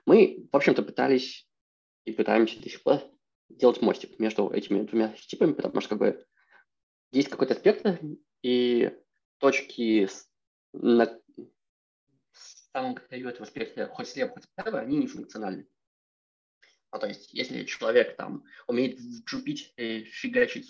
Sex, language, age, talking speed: male, Russian, 20-39, 130 wpm